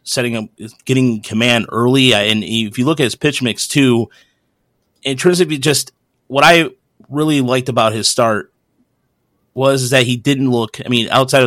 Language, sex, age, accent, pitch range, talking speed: English, male, 30-49, American, 115-140 Hz, 175 wpm